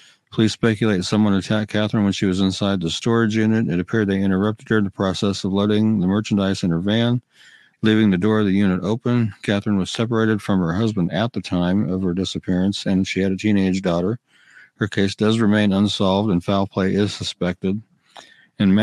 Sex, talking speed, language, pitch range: male, 200 wpm, English, 95-105 Hz